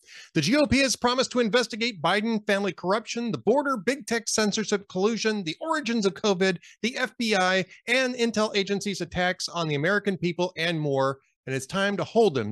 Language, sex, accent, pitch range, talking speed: English, male, American, 155-230 Hz, 175 wpm